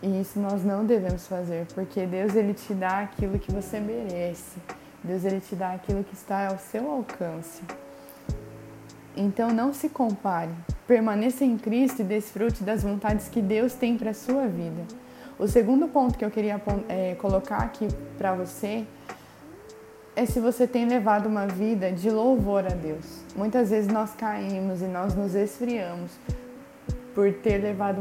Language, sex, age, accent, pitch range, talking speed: Portuguese, female, 20-39, Brazilian, 185-220 Hz, 165 wpm